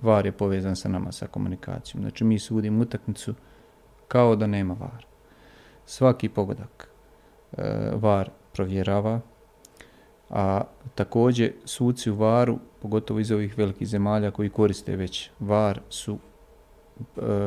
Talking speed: 125 wpm